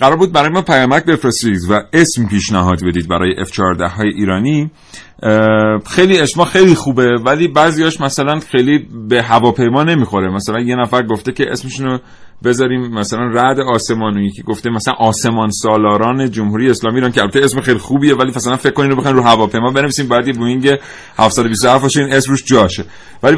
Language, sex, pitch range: Persian, male, 105-135 Hz